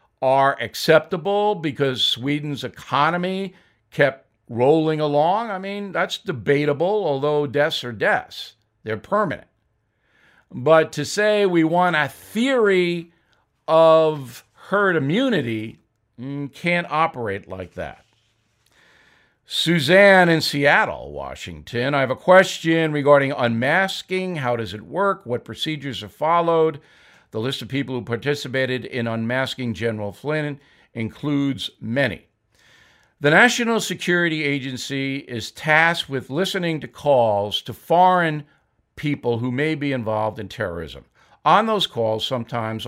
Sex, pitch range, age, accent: male, 120-170 Hz, 50-69, American